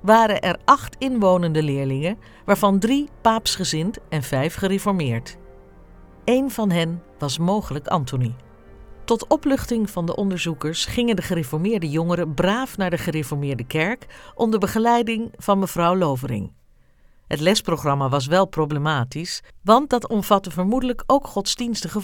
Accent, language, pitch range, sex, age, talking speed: Dutch, Dutch, 155-215 Hz, female, 50-69, 130 wpm